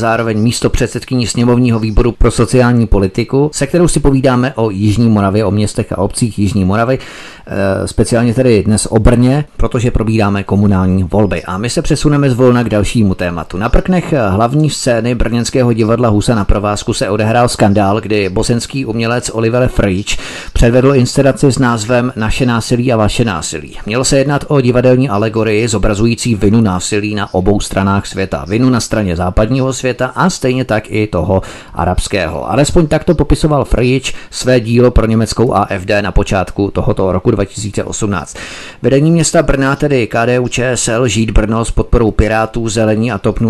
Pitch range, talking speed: 105-130 Hz, 165 wpm